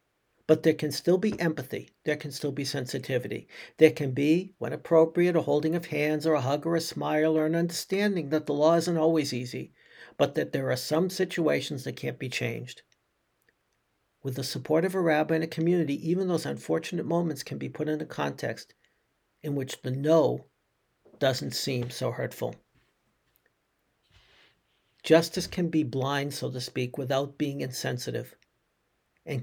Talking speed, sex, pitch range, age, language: 170 wpm, male, 130-160 Hz, 60-79, English